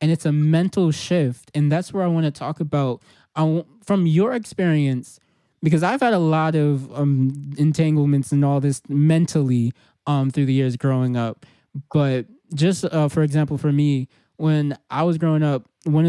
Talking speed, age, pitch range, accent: 175 wpm, 20-39, 135-155 Hz, American